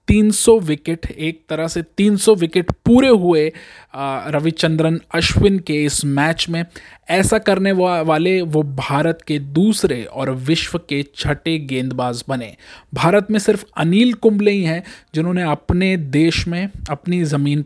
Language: Hindi